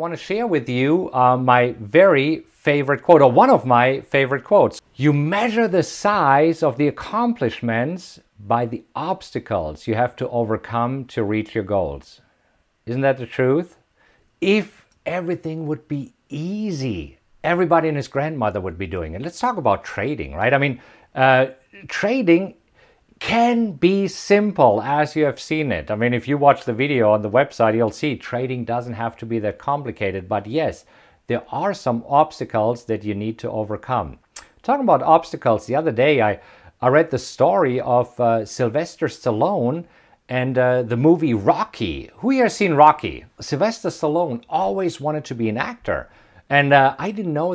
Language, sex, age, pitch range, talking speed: English, male, 50-69, 120-165 Hz, 170 wpm